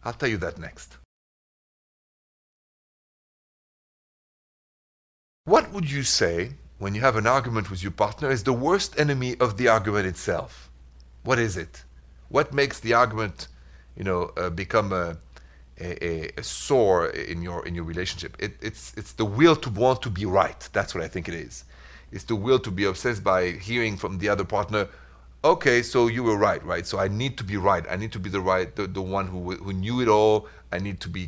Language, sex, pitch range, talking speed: English, male, 85-120 Hz, 200 wpm